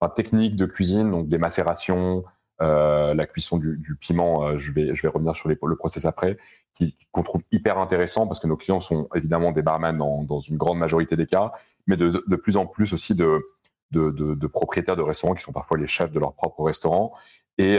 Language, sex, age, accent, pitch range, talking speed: French, male, 30-49, French, 80-90 Hz, 225 wpm